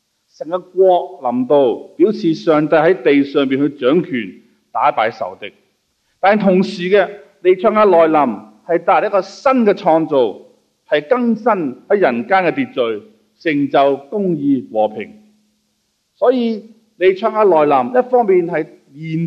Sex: male